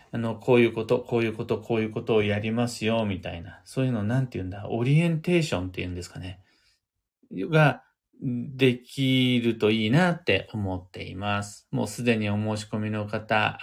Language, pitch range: Japanese, 105-140 Hz